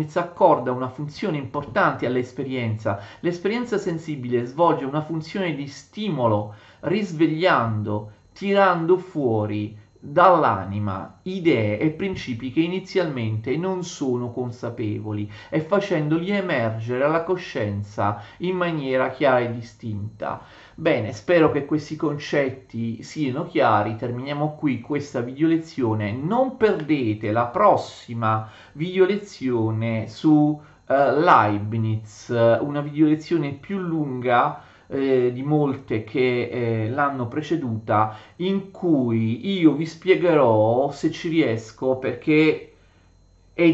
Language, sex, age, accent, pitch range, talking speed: Italian, male, 40-59, native, 110-165 Hz, 100 wpm